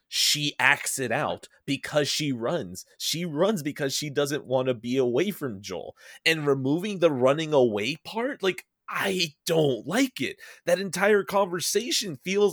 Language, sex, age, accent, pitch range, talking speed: English, male, 30-49, American, 130-180 Hz, 160 wpm